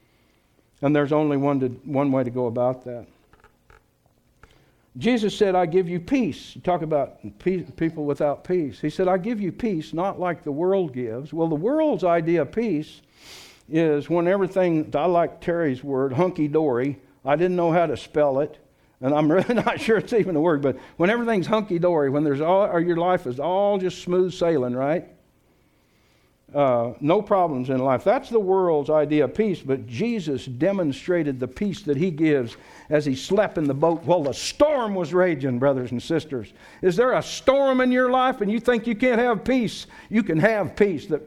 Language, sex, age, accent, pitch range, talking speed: English, male, 60-79, American, 140-195 Hz, 195 wpm